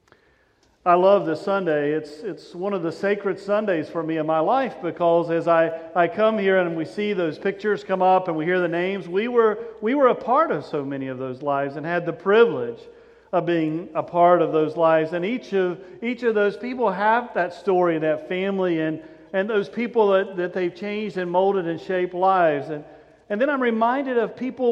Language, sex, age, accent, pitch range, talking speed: English, male, 50-69, American, 165-220 Hz, 215 wpm